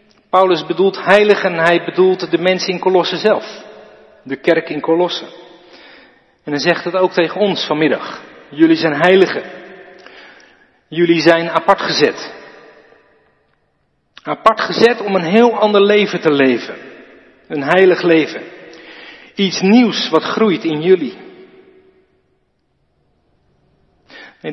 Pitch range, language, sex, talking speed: 155-200 Hz, Dutch, male, 115 wpm